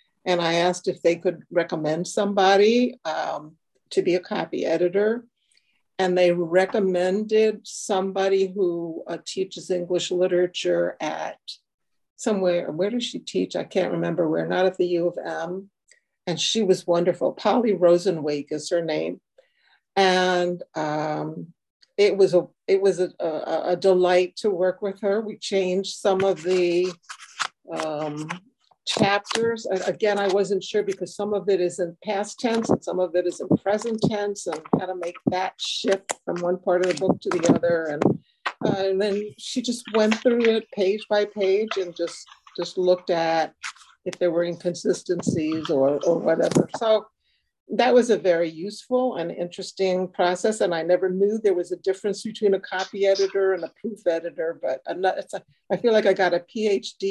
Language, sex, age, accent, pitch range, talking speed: English, female, 60-79, American, 175-210 Hz, 175 wpm